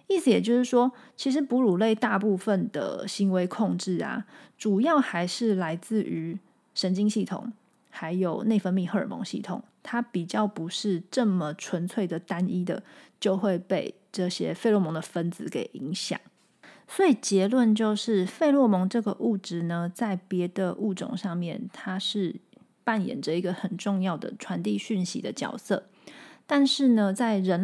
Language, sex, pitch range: Chinese, female, 180-230 Hz